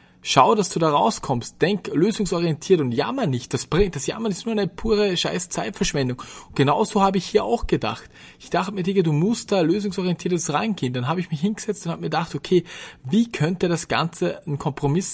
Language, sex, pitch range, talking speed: German, male, 140-190 Hz, 200 wpm